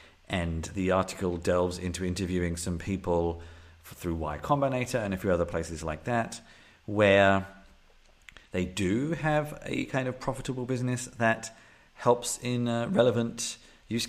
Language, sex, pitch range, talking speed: English, male, 85-105 Hz, 140 wpm